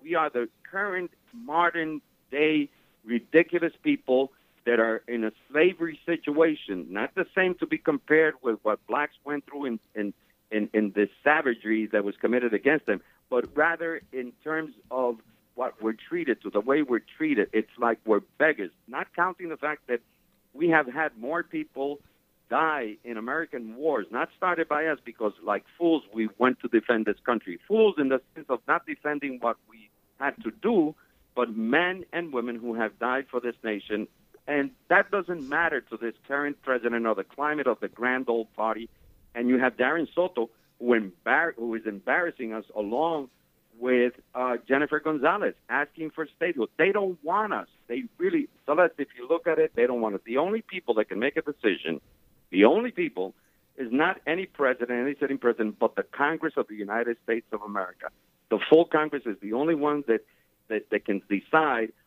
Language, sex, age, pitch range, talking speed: English, male, 60-79, 115-160 Hz, 185 wpm